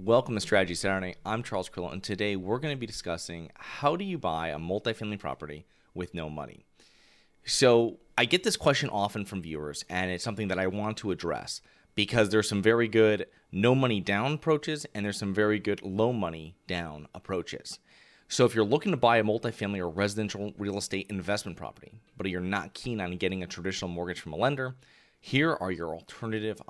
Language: English